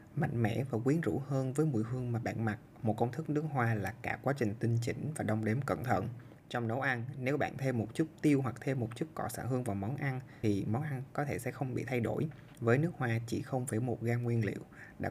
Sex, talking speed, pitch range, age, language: male, 270 wpm, 110-140 Hz, 20-39, Vietnamese